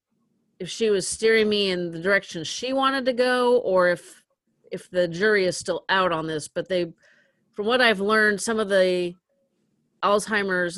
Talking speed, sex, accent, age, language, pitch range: 180 wpm, female, American, 40-59, English, 175-215 Hz